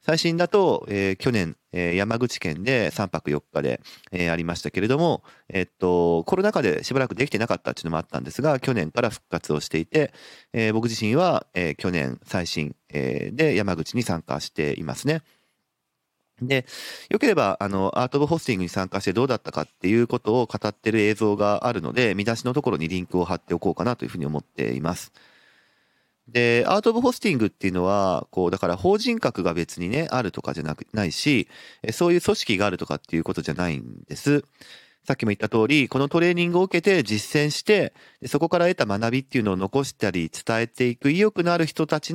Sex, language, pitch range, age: male, Japanese, 90-150 Hz, 40-59